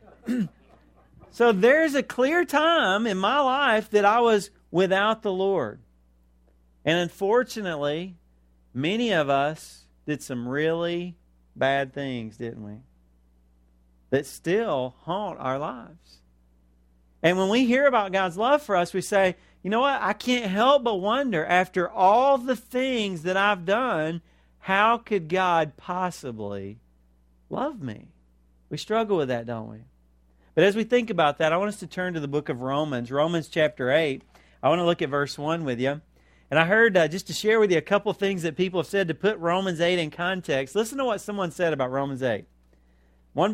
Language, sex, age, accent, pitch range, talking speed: English, male, 40-59, American, 125-205 Hz, 175 wpm